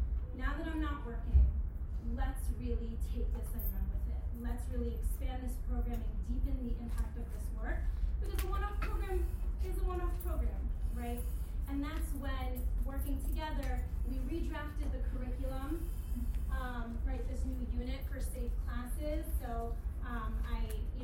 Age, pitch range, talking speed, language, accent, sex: 30-49, 70-80 Hz, 155 wpm, English, American, female